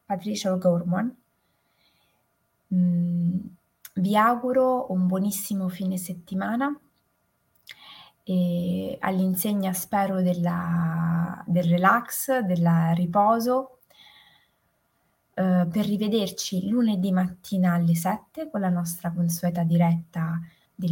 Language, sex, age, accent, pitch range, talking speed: Italian, female, 20-39, native, 175-205 Hz, 85 wpm